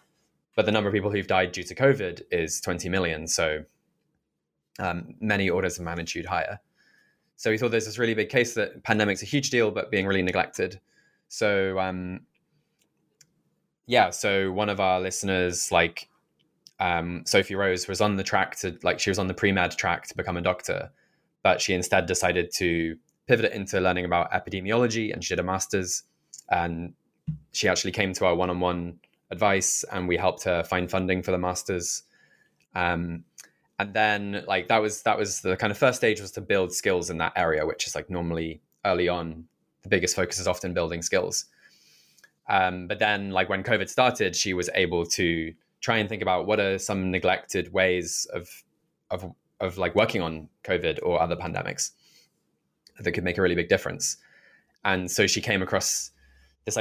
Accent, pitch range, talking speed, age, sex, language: British, 85-100 Hz, 185 wpm, 20-39, male, English